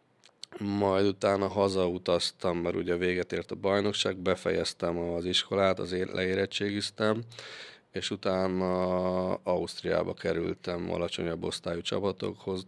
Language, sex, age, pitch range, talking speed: Hungarian, male, 20-39, 90-100 Hz, 100 wpm